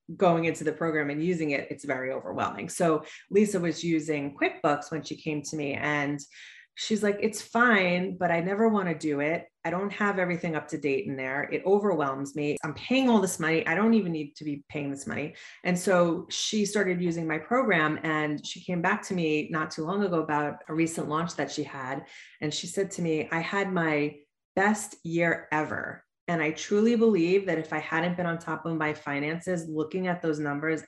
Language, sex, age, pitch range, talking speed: English, female, 30-49, 150-180 Hz, 215 wpm